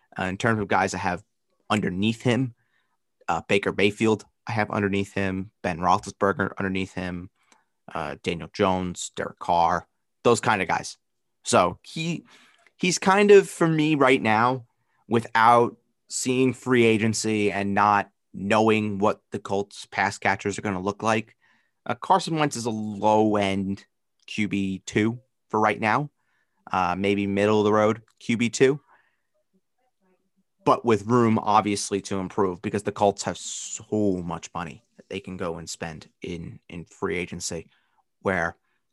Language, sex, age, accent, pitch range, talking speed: English, male, 30-49, American, 95-120 Hz, 145 wpm